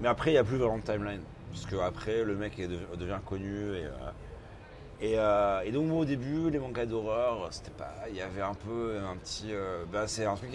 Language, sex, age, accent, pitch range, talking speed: French, male, 30-49, French, 100-120 Hz, 250 wpm